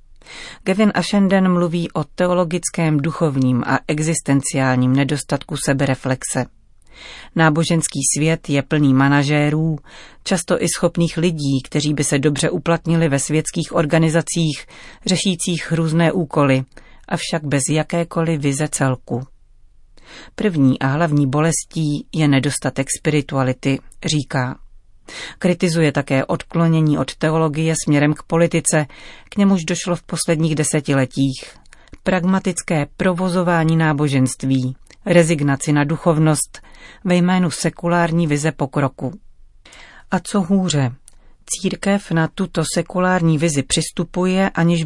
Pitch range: 140-170 Hz